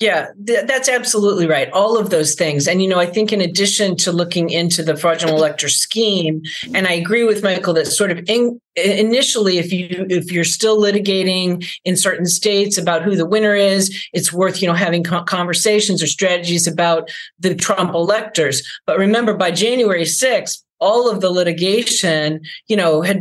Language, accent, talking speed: English, American, 175 wpm